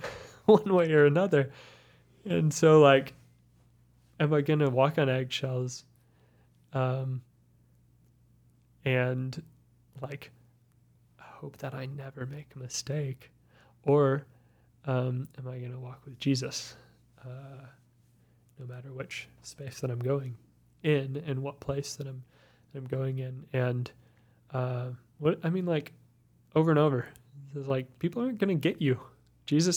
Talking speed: 140 wpm